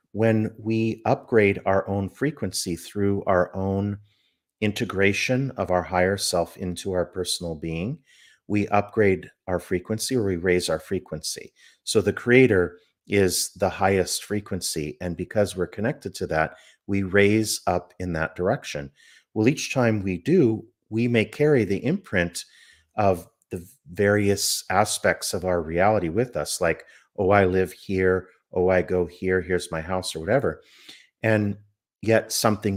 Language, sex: English, male